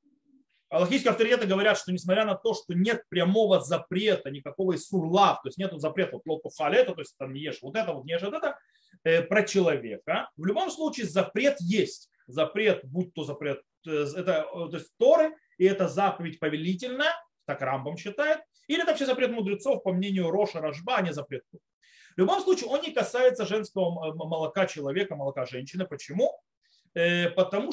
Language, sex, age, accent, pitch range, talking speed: Russian, male, 30-49, native, 170-250 Hz, 165 wpm